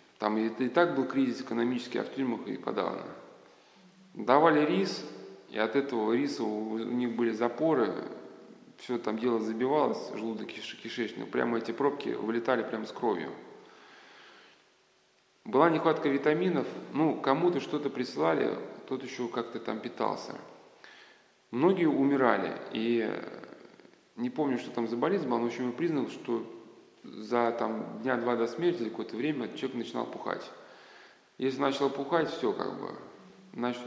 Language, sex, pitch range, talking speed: Russian, male, 115-150 Hz, 145 wpm